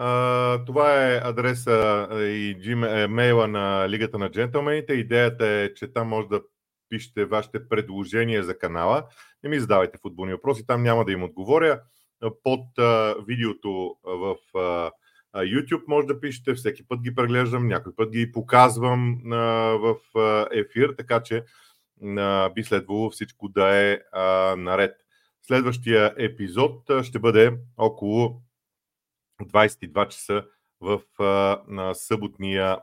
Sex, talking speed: male, 130 wpm